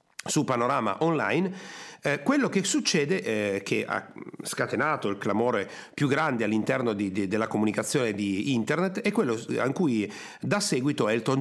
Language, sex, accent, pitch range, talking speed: Italian, male, native, 120-180 Hz, 155 wpm